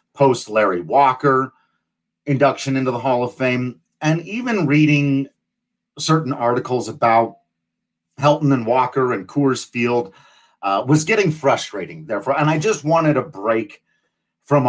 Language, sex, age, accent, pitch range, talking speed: English, male, 40-59, American, 115-150 Hz, 130 wpm